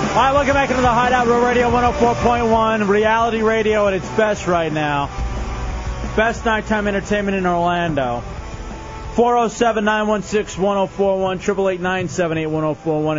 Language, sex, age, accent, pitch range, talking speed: English, male, 30-49, American, 110-170 Hz, 110 wpm